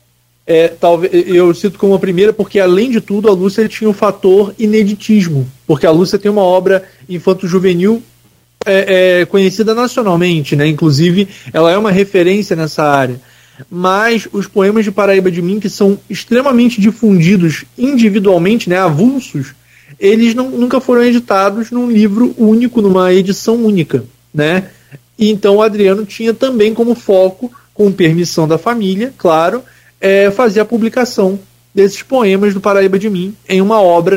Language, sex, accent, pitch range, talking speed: Portuguese, male, Brazilian, 165-210 Hz, 150 wpm